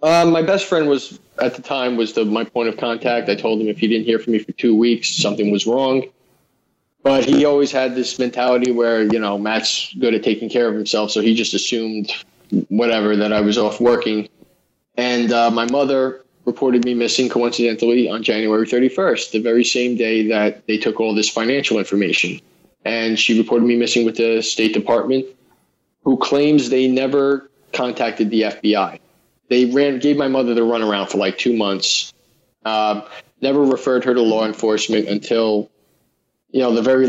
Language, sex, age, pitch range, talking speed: English, male, 20-39, 110-125 Hz, 185 wpm